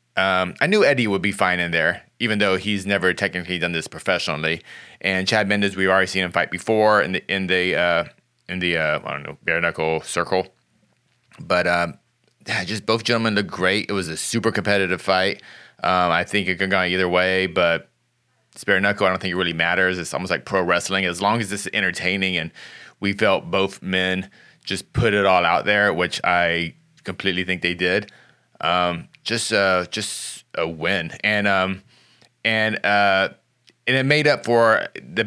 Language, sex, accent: English, male, American